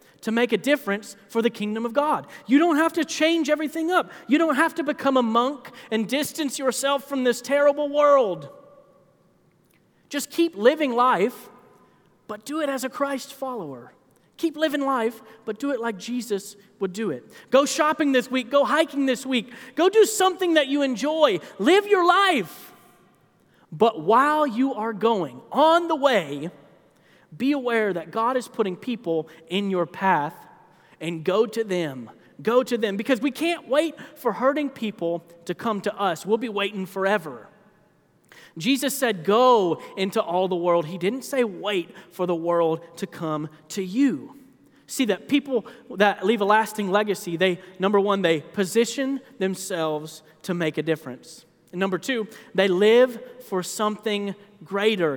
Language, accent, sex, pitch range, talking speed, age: English, American, male, 190-275 Hz, 165 wpm, 30-49